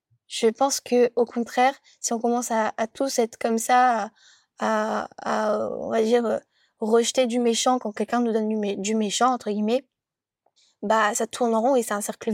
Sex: female